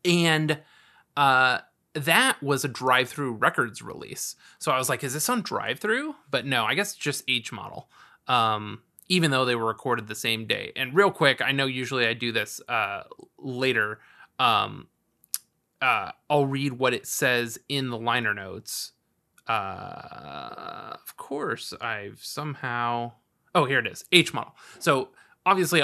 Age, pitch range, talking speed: 20-39, 125-160 Hz, 160 wpm